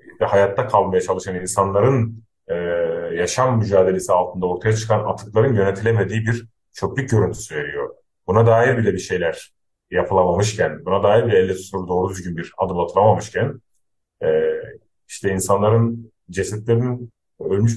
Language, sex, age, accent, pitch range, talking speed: Turkish, male, 40-59, native, 95-115 Hz, 120 wpm